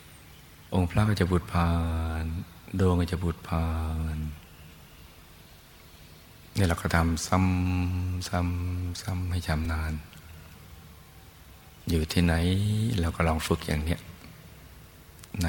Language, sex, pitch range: Thai, male, 80-90 Hz